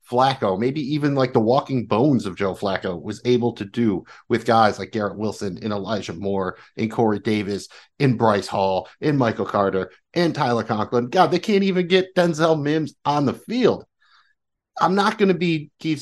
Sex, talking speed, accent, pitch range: male, 185 wpm, American, 115-160 Hz